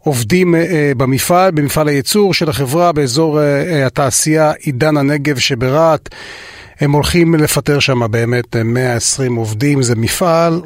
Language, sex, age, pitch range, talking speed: Hebrew, male, 30-49, 115-145 Hz, 115 wpm